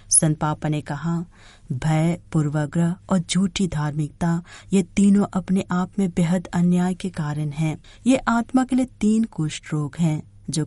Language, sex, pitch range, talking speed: Hindi, female, 150-190 Hz, 155 wpm